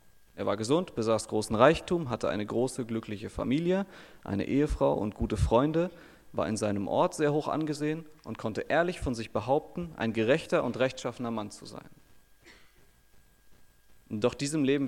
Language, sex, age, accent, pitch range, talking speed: German, male, 30-49, German, 110-135 Hz, 155 wpm